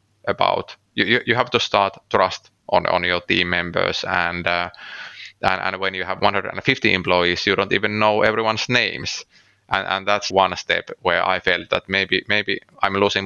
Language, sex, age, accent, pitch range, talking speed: English, male, 20-39, Finnish, 90-105 Hz, 180 wpm